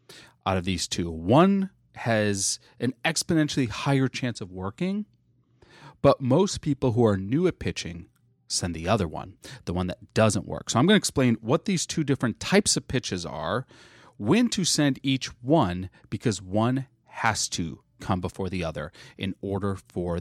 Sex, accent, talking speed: male, American, 170 wpm